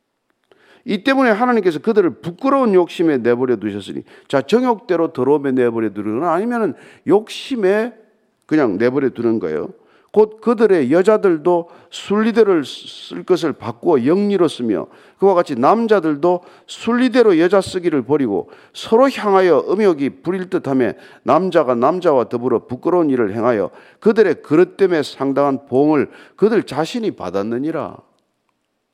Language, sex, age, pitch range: Korean, male, 50-69, 145-245 Hz